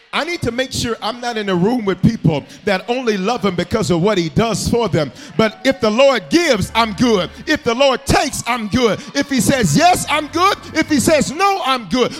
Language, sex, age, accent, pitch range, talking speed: English, male, 40-59, American, 170-245 Hz, 235 wpm